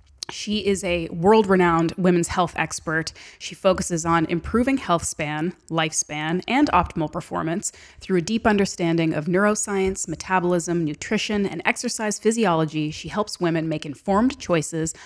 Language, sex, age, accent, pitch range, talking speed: English, female, 30-49, American, 160-195 Hz, 135 wpm